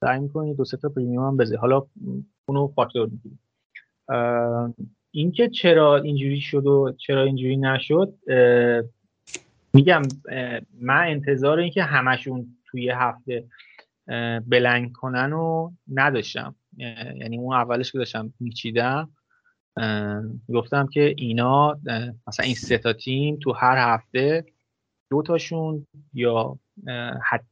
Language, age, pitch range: Persian, 30-49, 120-150 Hz